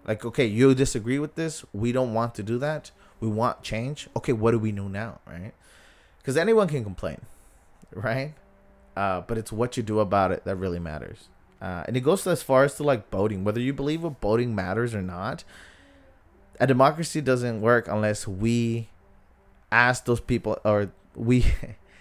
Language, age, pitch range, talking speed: English, 20-39, 100-125 Hz, 185 wpm